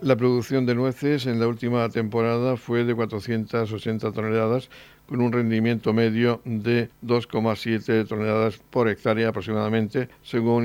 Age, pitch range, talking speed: 60-79, 110-120 Hz, 130 wpm